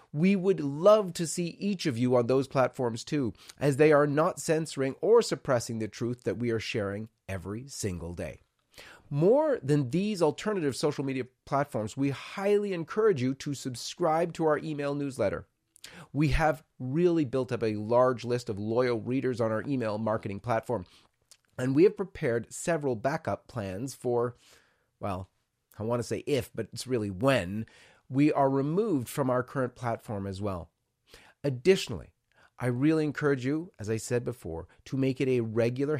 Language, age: English, 30-49